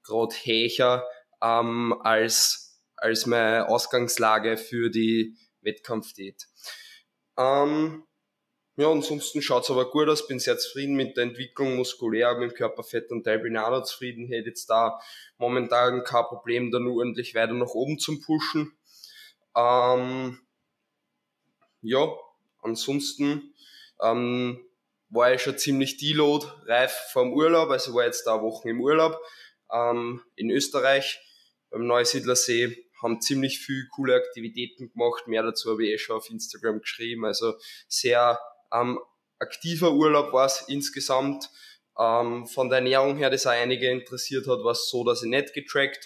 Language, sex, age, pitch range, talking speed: German, male, 20-39, 115-135 Hz, 145 wpm